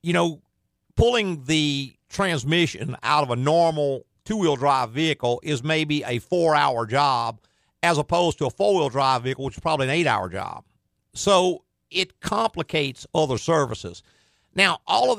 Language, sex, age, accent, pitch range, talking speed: English, male, 50-69, American, 130-170 Hz, 150 wpm